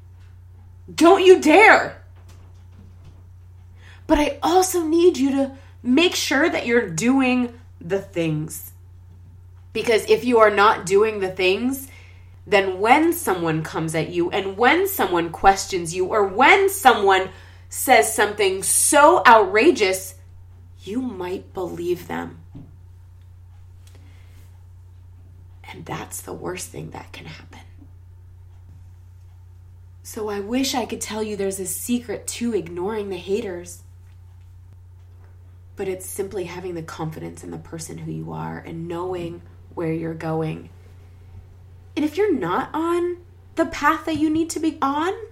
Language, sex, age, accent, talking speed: English, female, 20-39, American, 130 wpm